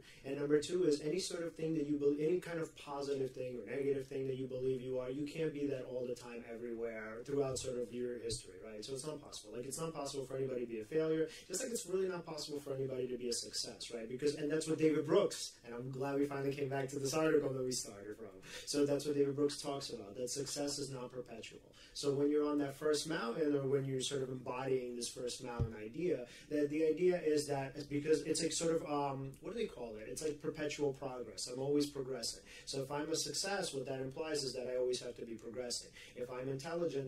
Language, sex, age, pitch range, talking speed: English, male, 30-49, 125-150 Hz, 250 wpm